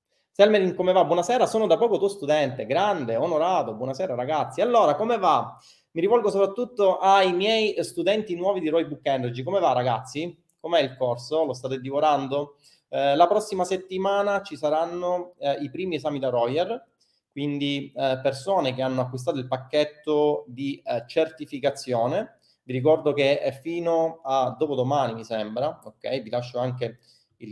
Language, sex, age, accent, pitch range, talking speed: Italian, male, 30-49, native, 130-175 Hz, 160 wpm